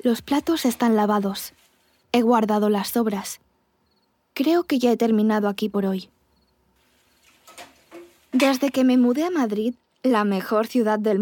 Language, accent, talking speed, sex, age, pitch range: Spanish, Spanish, 140 wpm, female, 20-39, 215-255 Hz